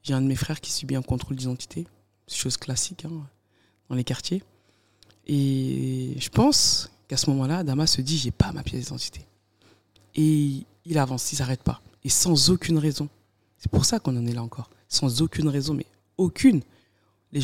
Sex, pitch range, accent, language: female, 105-145 Hz, French, French